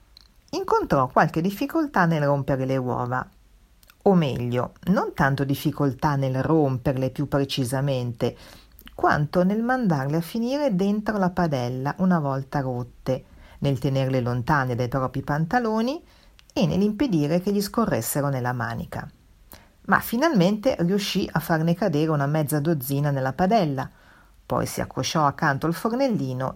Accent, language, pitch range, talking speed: native, Italian, 135-190 Hz, 130 wpm